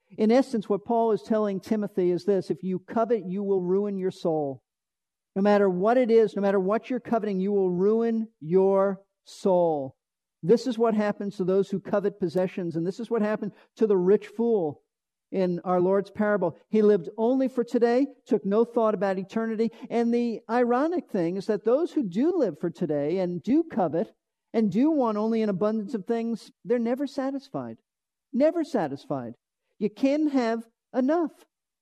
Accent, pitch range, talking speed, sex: American, 195-235 Hz, 180 wpm, male